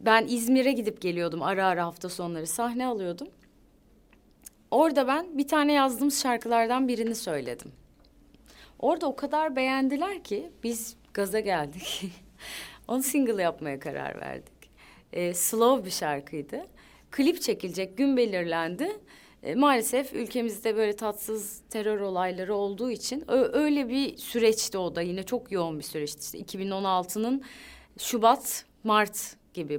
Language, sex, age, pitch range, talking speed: Turkish, female, 30-49, 180-260 Hz, 130 wpm